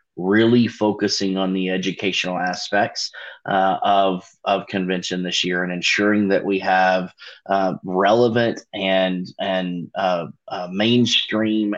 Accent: American